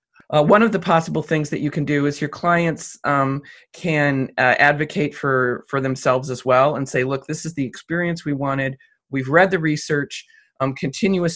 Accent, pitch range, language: American, 135-175 Hz, English